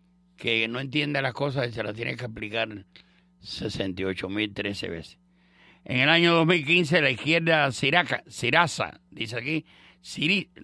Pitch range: 140-180 Hz